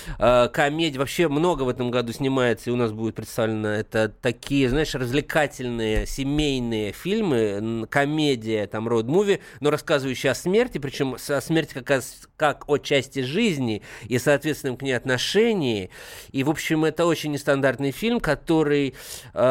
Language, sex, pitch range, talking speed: Russian, male, 120-150 Hz, 150 wpm